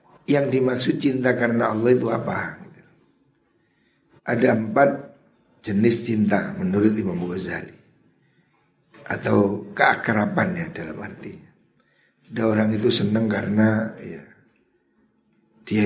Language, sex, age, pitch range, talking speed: Indonesian, male, 60-79, 110-155 Hz, 95 wpm